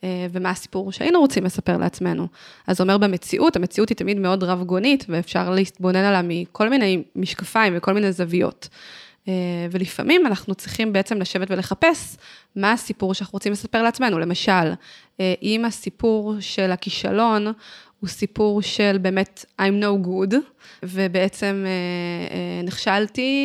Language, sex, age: Hebrew, female, 20-39